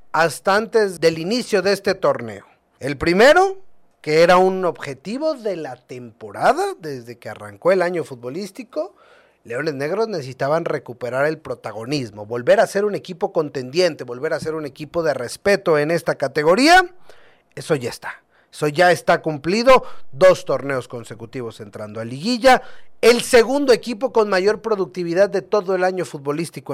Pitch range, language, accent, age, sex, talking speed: 150-225 Hz, Spanish, Mexican, 40-59, male, 155 wpm